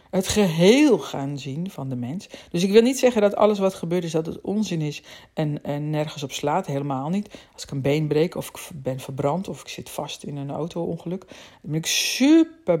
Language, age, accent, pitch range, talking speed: Dutch, 50-69, Dutch, 155-210 Hz, 230 wpm